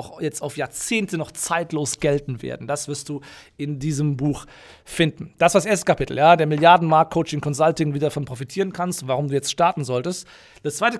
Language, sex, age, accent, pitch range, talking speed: German, male, 40-59, German, 150-175 Hz, 180 wpm